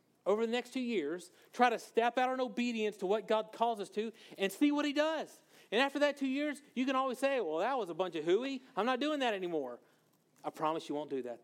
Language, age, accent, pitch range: English, 40-59, American, 175-270 Hz